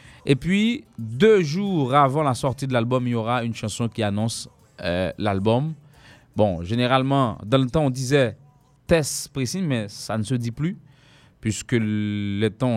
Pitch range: 95-125 Hz